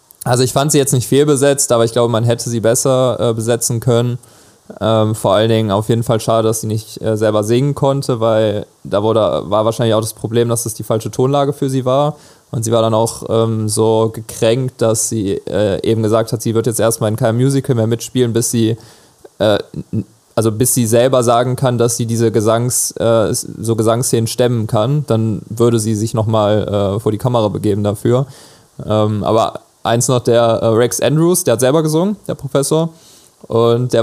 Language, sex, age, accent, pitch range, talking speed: German, male, 20-39, German, 115-135 Hz, 200 wpm